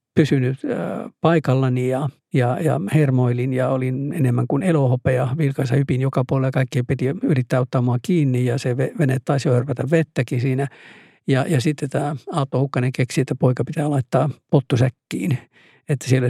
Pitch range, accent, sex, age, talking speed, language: 130-155 Hz, native, male, 60-79, 160 wpm, Finnish